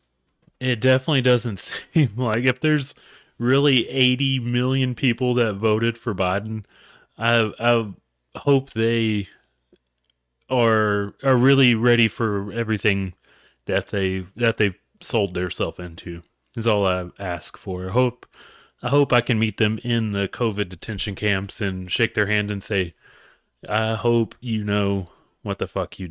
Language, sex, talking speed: English, male, 145 wpm